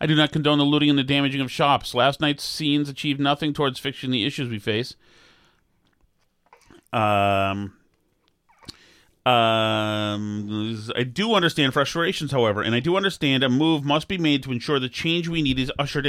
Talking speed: 170 wpm